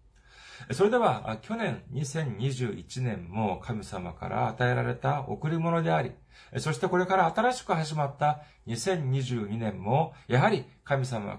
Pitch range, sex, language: 105-150 Hz, male, Japanese